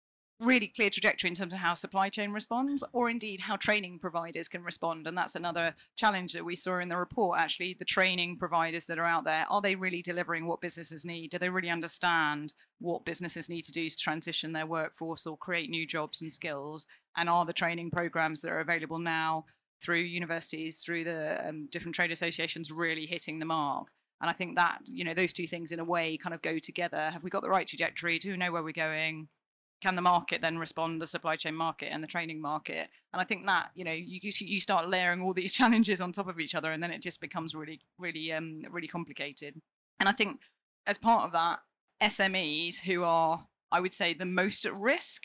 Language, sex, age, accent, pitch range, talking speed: English, female, 30-49, British, 165-185 Hz, 225 wpm